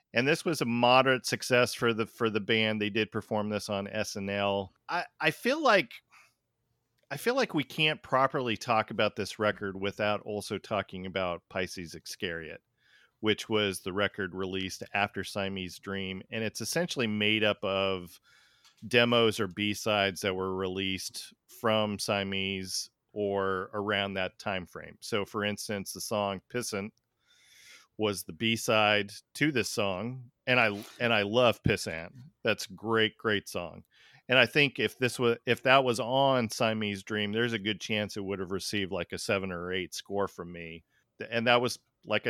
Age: 40-59